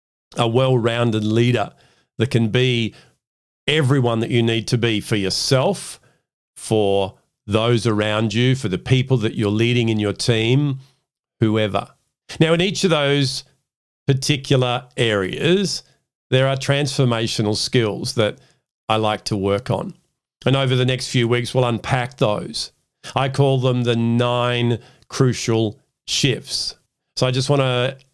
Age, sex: 50-69, male